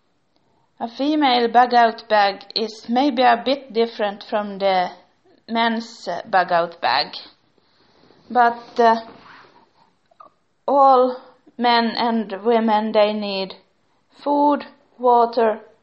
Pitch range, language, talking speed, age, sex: 210-245 Hz, English, 90 wpm, 30-49, female